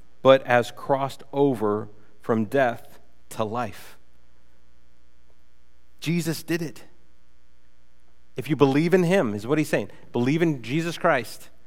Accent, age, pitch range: American, 30-49, 115-165 Hz